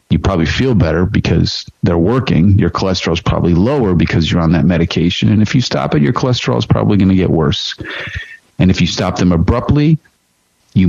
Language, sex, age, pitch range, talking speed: English, male, 40-59, 85-105 Hz, 205 wpm